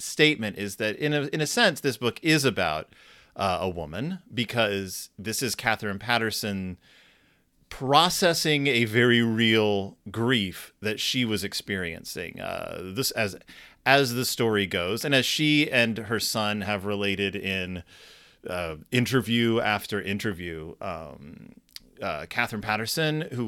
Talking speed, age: 140 wpm, 30-49